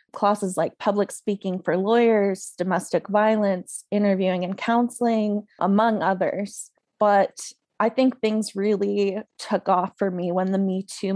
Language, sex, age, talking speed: English, female, 20-39, 140 wpm